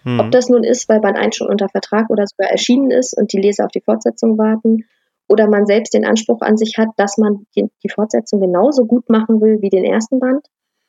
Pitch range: 190-235 Hz